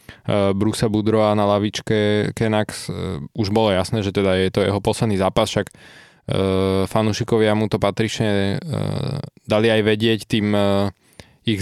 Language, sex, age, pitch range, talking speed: Slovak, male, 20-39, 100-115 Hz, 130 wpm